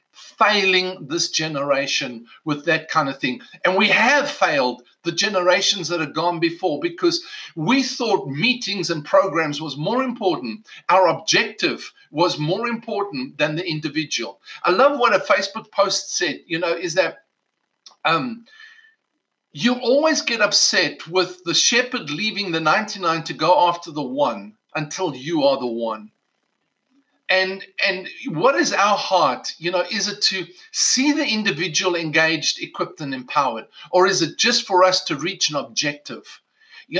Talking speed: 155 wpm